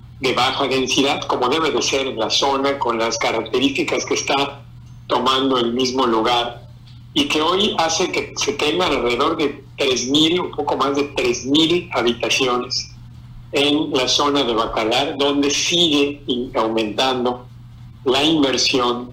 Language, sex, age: Spanish, male, 50-69